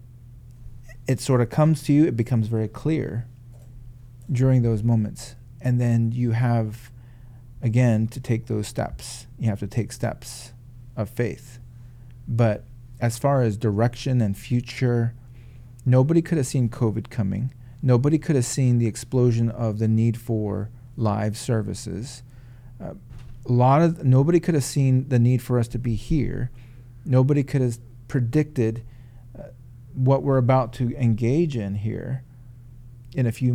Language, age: English, 40-59